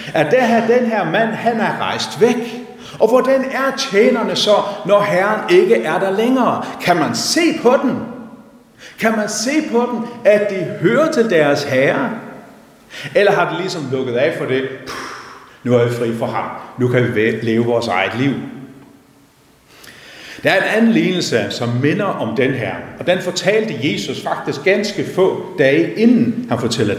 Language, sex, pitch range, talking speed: Danish, male, 150-235 Hz, 175 wpm